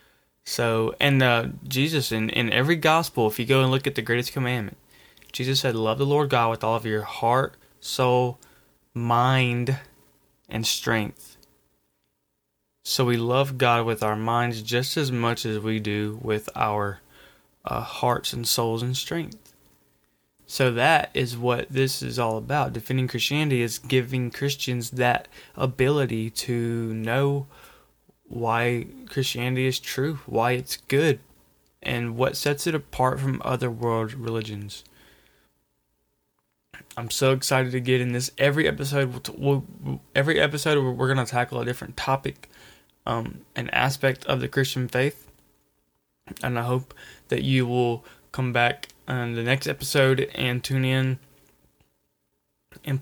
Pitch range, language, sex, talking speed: 115-135 Hz, English, male, 145 wpm